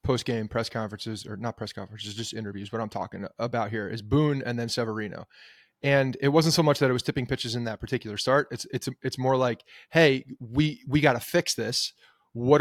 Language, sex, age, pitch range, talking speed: English, male, 30-49, 125-150 Hz, 220 wpm